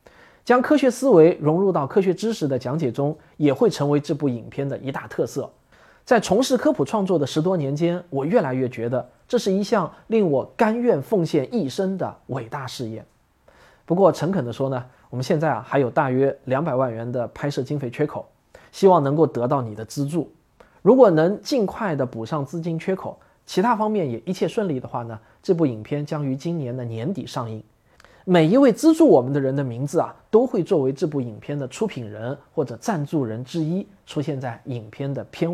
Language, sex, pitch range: Chinese, male, 130-170 Hz